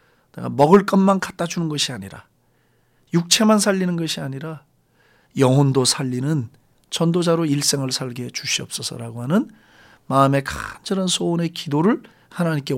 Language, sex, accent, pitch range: Korean, male, native, 125-185 Hz